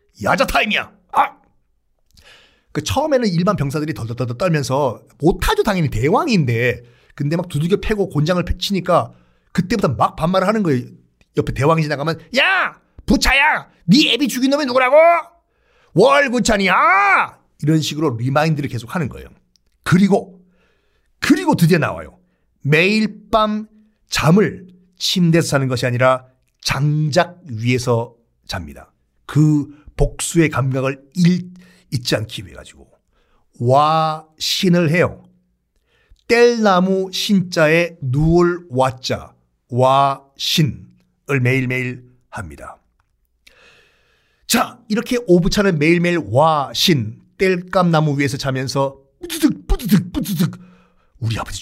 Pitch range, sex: 130-195 Hz, male